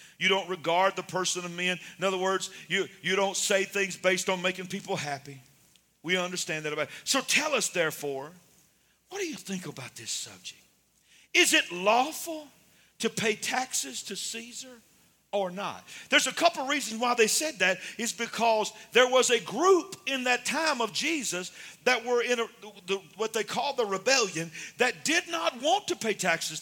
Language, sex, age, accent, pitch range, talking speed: English, male, 50-69, American, 185-255 Hz, 185 wpm